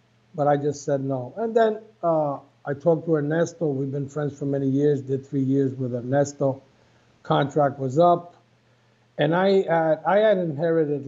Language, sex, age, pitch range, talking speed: English, male, 50-69, 135-160 Hz, 175 wpm